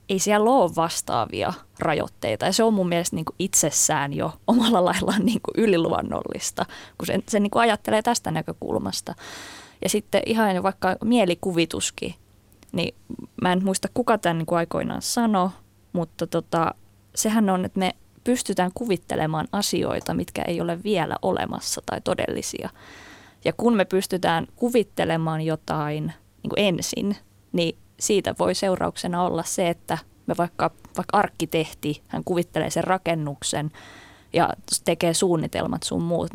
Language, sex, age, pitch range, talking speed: Finnish, female, 20-39, 170-210 Hz, 140 wpm